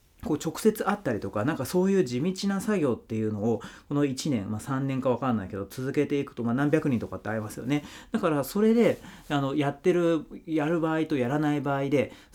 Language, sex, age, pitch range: Japanese, male, 40-59, 115-165 Hz